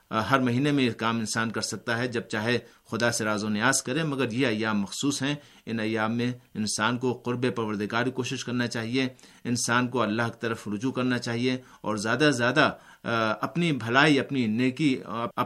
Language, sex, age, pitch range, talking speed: Urdu, male, 50-69, 110-140 Hz, 185 wpm